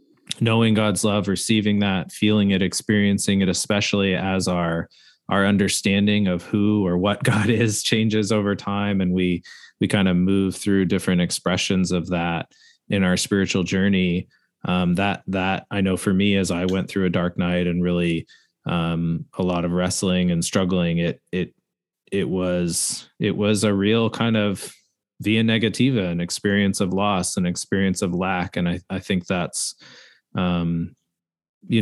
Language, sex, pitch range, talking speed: English, male, 90-100 Hz, 165 wpm